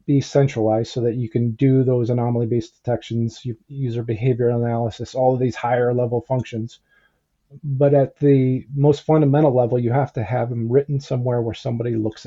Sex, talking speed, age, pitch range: male, 175 wpm, 40-59, 120-140 Hz